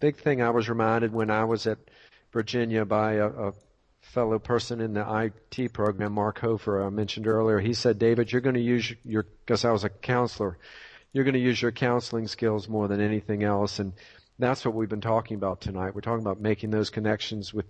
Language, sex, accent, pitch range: English, male, American, 110-125 Hz